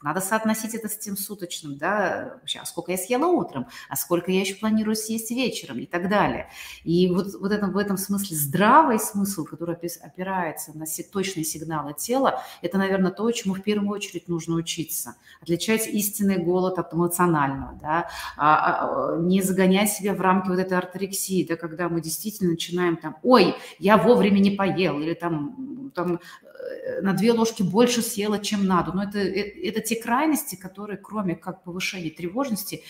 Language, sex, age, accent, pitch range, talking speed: Russian, female, 30-49, native, 155-205 Hz, 155 wpm